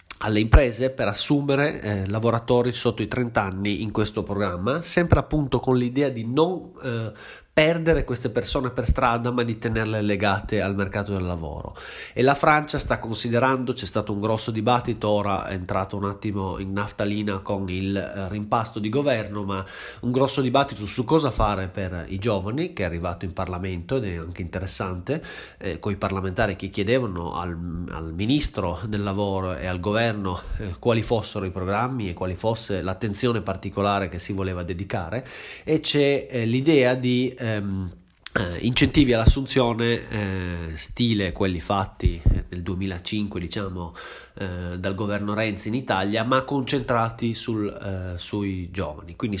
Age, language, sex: 30-49, Italian, male